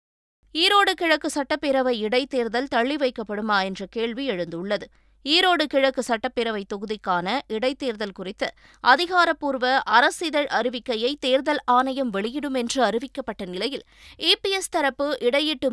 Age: 20-39